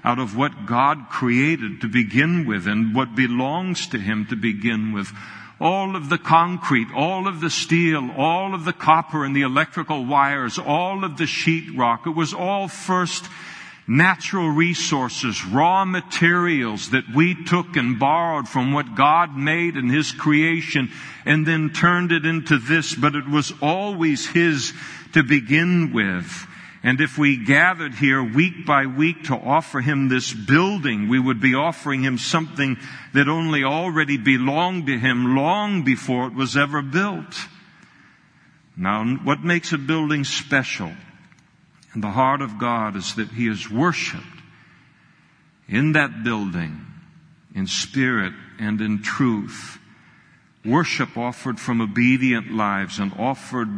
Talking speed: 145 wpm